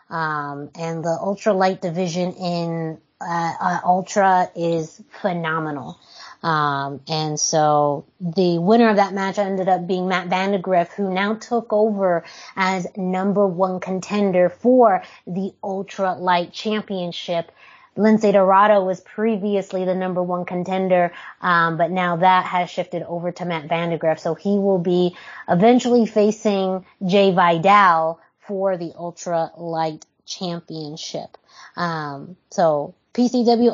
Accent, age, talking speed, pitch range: American, 20-39, 125 wpm, 170-195 Hz